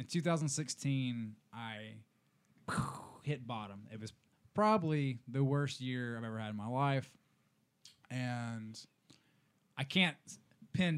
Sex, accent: male, American